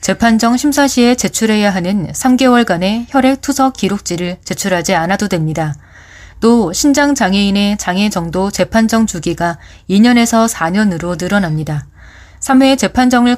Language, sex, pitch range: Korean, female, 175-230 Hz